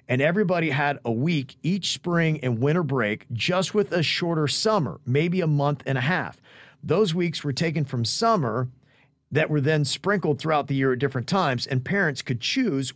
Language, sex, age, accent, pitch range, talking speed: English, male, 40-59, American, 135-180 Hz, 190 wpm